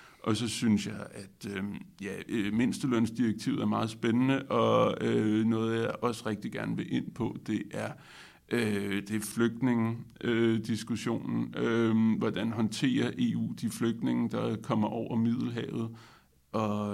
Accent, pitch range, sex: native, 105-120 Hz, male